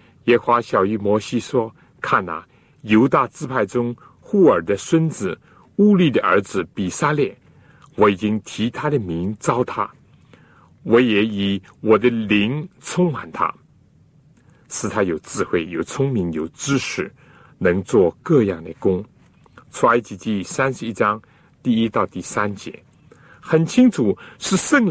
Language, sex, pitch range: Chinese, male, 100-155 Hz